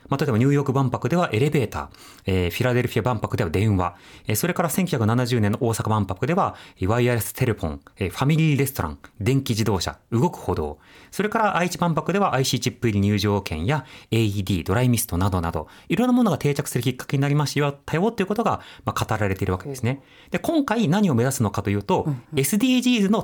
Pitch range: 100-160 Hz